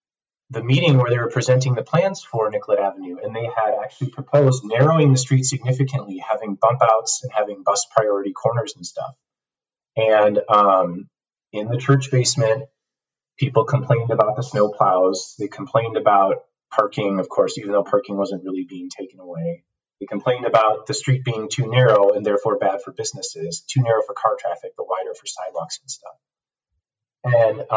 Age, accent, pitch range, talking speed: 30-49, American, 115-145 Hz, 175 wpm